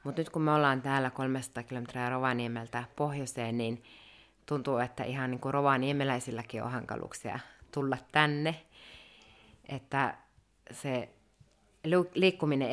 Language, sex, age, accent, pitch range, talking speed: Finnish, female, 30-49, native, 120-140 Hz, 110 wpm